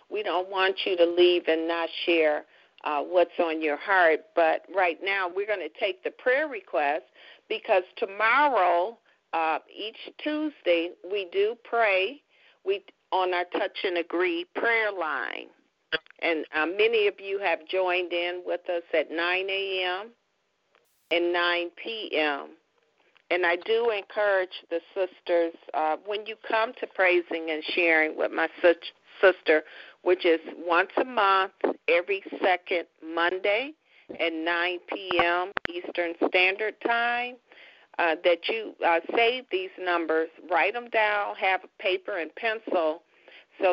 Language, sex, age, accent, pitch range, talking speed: English, female, 50-69, American, 170-225 Hz, 140 wpm